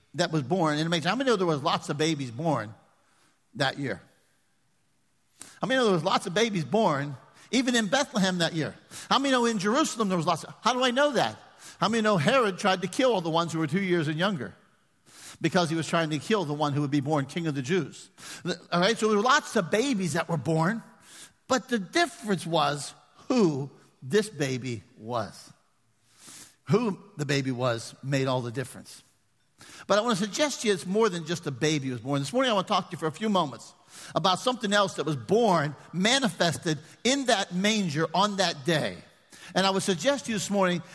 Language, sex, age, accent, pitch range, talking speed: English, male, 50-69, American, 150-210 Hz, 220 wpm